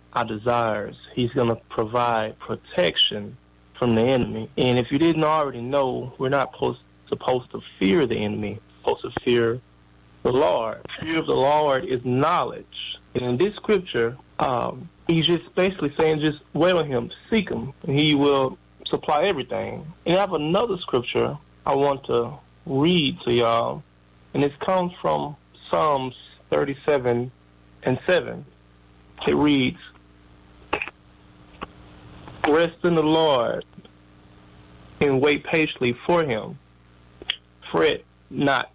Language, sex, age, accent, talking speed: English, male, 30-49, American, 135 wpm